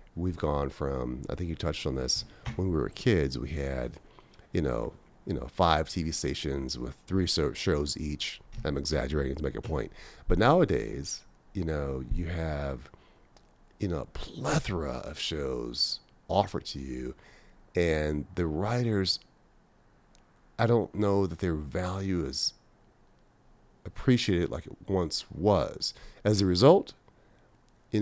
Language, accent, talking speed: English, American, 140 wpm